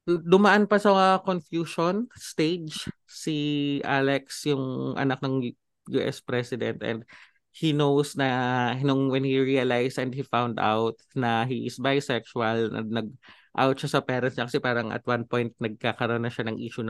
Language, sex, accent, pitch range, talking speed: English, male, Filipino, 120-155 Hz, 155 wpm